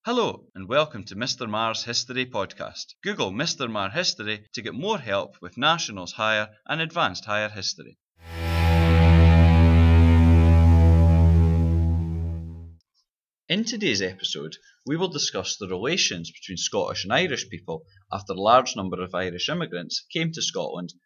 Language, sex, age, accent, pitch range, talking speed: English, male, 30-49, British, 85-125 Hz, 130 wpm